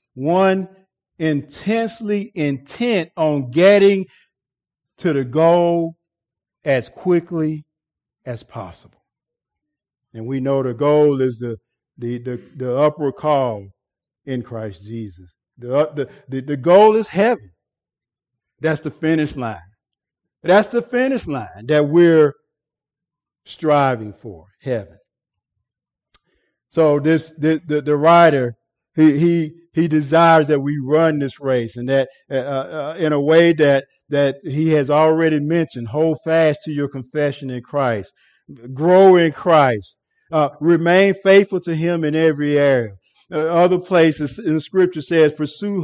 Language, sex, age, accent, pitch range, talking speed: English, male, 50-69, American, 135-170 Hz, 130 wpm